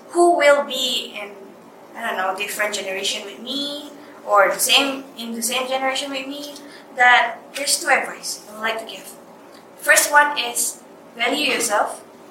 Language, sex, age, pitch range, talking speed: English, female, 20-39, 220-275 Hz, 165 wpm